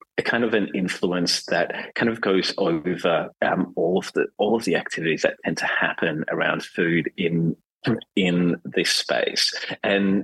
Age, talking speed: 30-49, 170 wpm